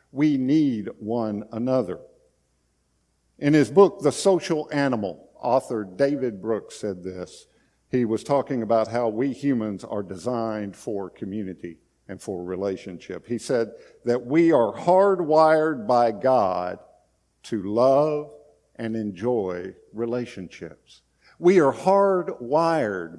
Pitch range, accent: 95-155 Hz, American